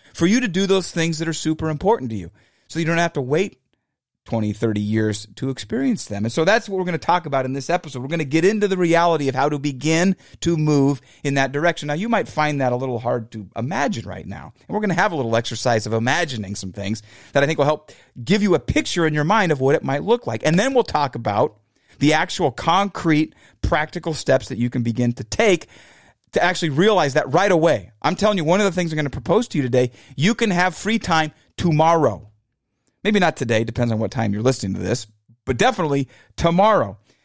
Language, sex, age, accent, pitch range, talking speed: English, male, 30-49, American, 125-185 Hz, 240 wpm